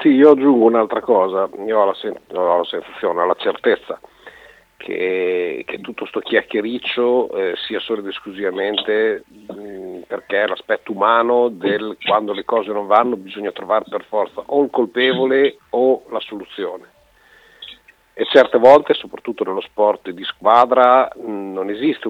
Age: 50-69